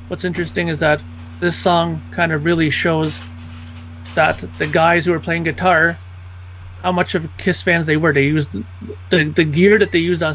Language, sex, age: English, male, 30-49